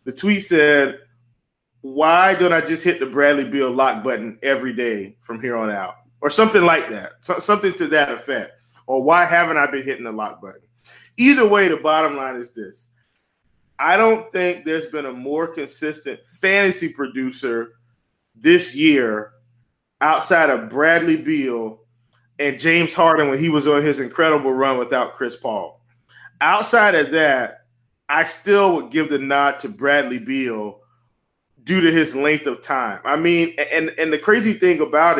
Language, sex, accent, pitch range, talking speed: English, male, American, 130-170 Hz, 165 wpm